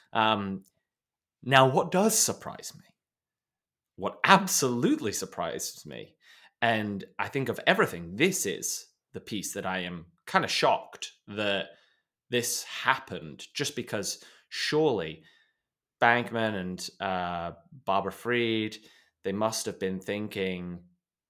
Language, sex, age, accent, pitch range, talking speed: English, male, 20-39, British, 95-135 Hz, 115 wpm